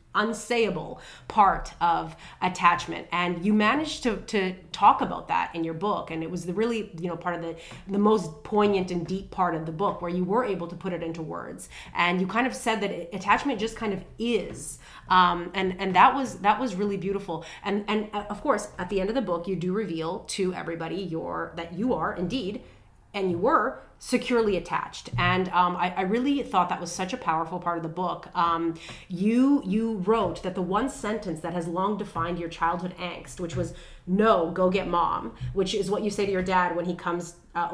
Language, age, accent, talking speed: English, 30-49, American, 215 wpm